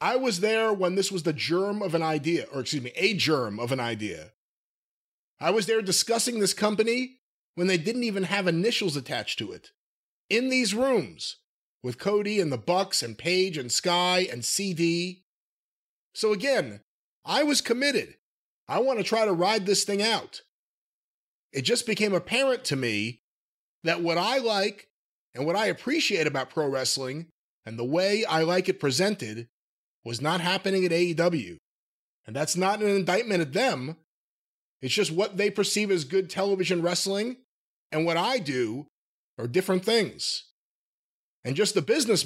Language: English